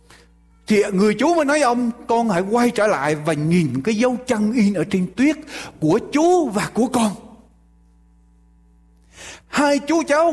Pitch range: 155-255 Hz